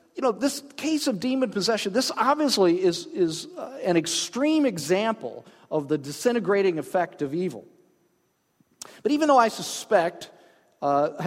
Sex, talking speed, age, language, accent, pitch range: male, 145 wpm, 50-69, English, American, 150-240 Hz